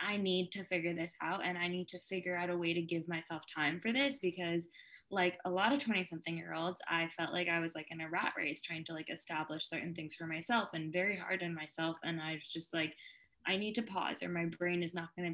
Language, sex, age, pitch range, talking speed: English, female, 10-29, 170-195 Hz, 260 wpm